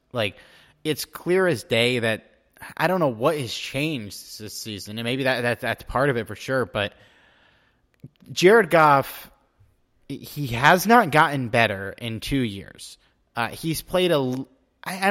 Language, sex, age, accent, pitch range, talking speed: English, male, 20-39, American, 105-140 Hz, 160 wpm